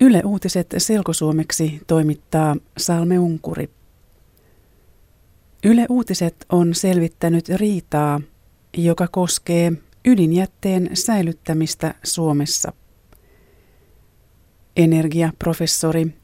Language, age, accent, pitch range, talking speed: Finnish, 30-49, native, 160-190 Hz, 60 wpm